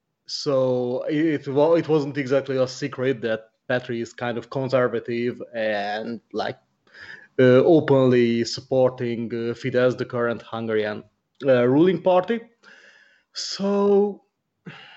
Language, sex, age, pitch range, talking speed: English, male, 30-49, 125-145 Hz, 110 wpm